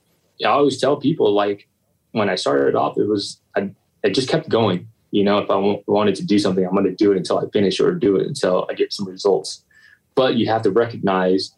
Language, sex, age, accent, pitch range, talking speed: English, male, 20-39, American, 95-115 Hz, 240 wpm